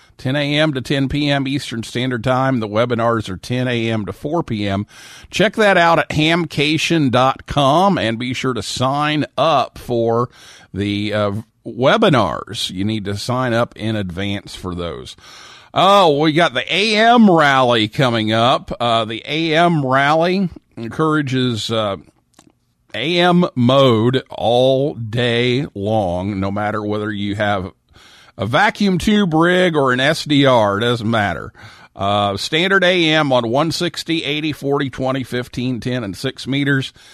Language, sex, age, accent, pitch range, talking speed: English, male, 50-69, American, 105-145 Hz, 140 wpm